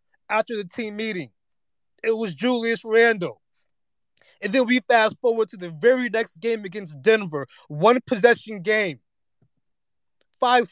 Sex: male